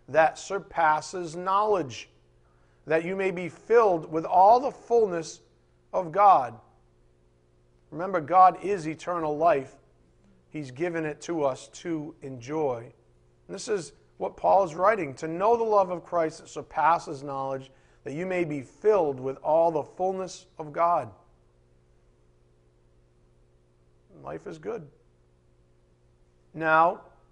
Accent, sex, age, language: American, male, 50-69, English